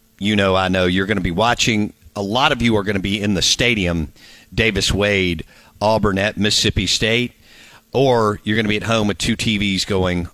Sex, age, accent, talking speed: male, 50-69, American, 215 wpm